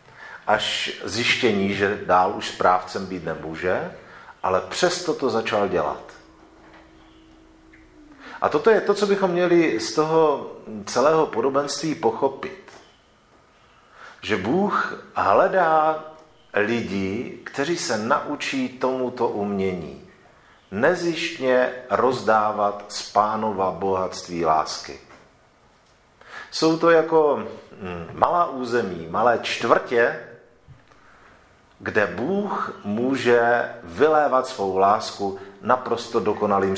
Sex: male